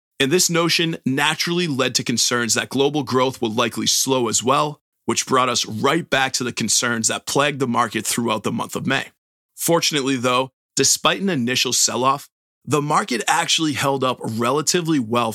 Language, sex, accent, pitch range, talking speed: English, male, American, 120-155 Hz, 175 wpm